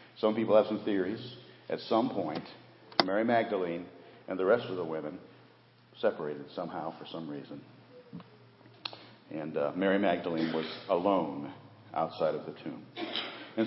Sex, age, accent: male, 50-69, American